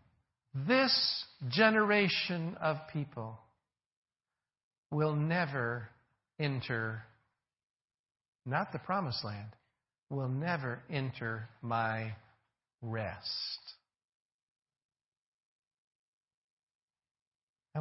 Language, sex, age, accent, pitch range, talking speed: English, male, 50-69, American, 135-215 Hz, 55 wpm